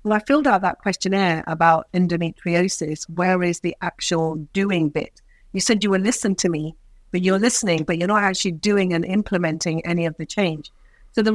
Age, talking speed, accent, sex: 40-59, 195 wpm, British, female